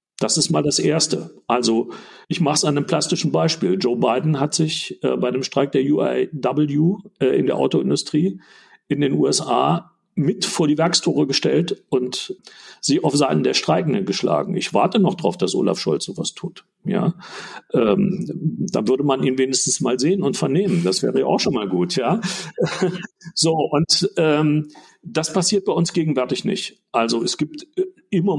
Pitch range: 140-185 Hz